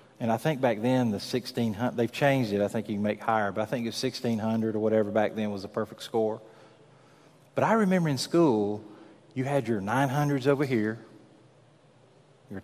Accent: American